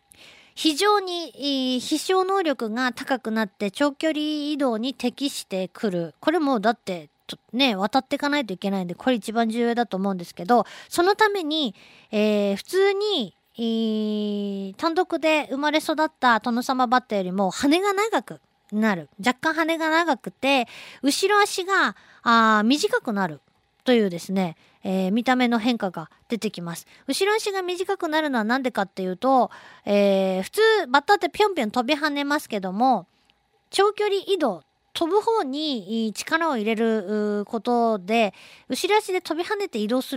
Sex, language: female, Japanese